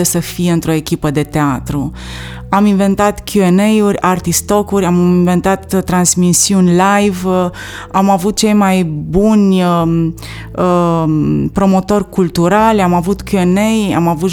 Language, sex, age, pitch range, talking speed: Romanian, female, 30-49, 170-200 Hz, 110 wpm